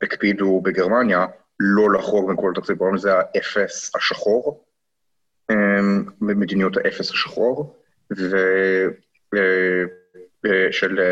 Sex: male